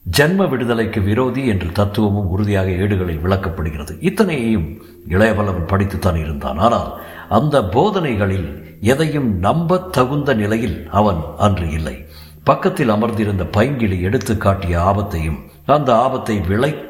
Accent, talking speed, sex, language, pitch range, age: native, 110 wpm, male, Tamil, 95-125 Hz, 60-79